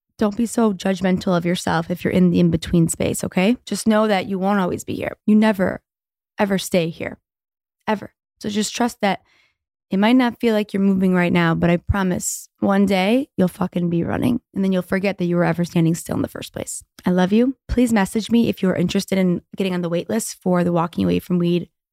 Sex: female